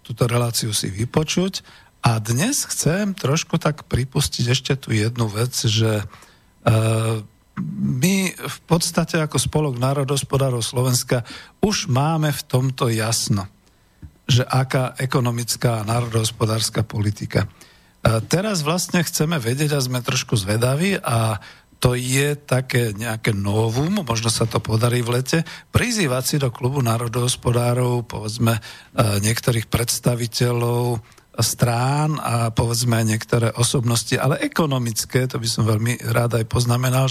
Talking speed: 120 wpm